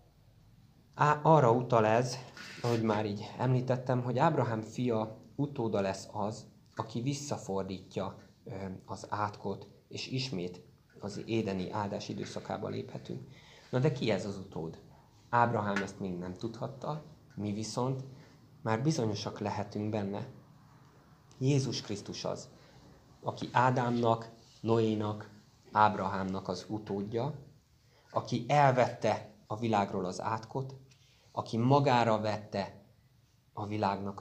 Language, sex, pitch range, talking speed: Hungarian, male, 105-125 Hz, 105 wpm